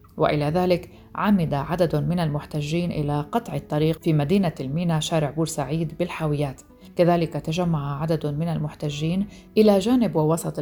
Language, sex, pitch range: Arabic, female, 150-175 Hz